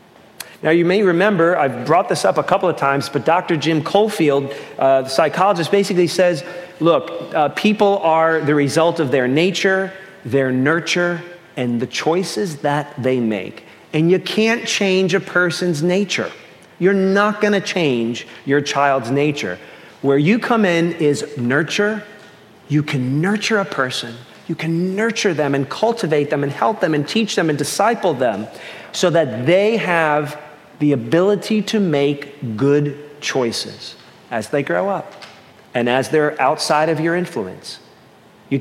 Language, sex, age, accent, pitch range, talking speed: English, male, 40-59, American, 140-190 Hz, 160 wpm